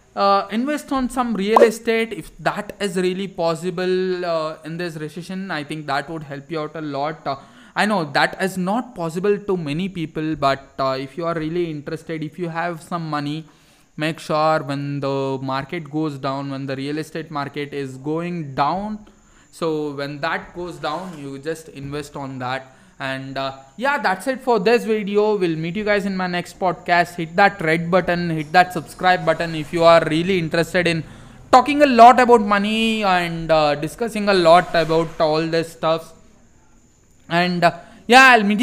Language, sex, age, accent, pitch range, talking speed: English, male, 20-39, Indian, 155-190 Hz, 185 wpm